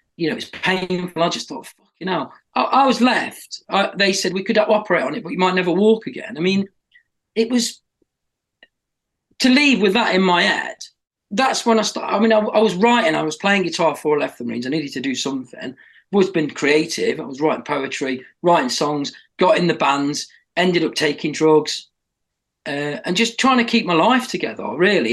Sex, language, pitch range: male, English, 165-230 Hz